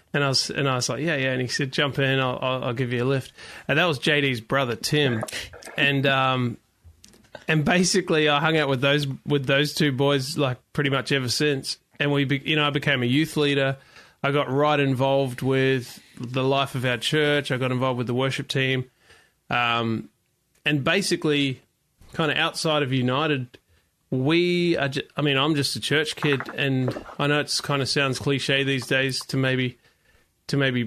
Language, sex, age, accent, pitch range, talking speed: English, male, 20-39, Australian, 130-150 Hz, 200 wpm